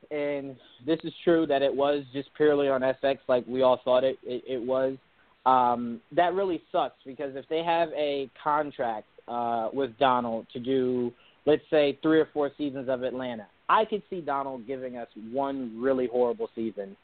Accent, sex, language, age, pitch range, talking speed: American, male, English, 20-39, 125-150 Hz, 185 wpm